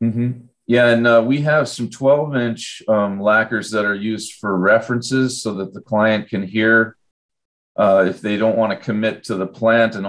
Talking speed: 190 wpm